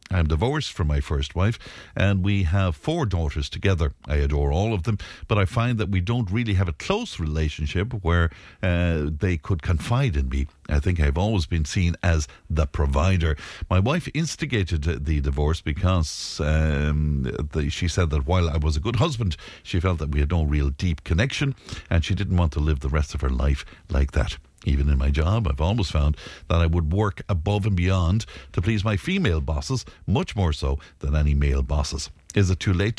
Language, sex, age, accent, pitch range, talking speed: English, male, 60-79, Irish, 75-105 Hz, 205 wpm